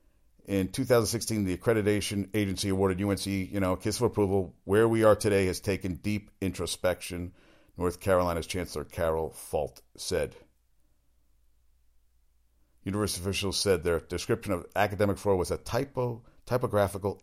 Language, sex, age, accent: English, male, 50-69, American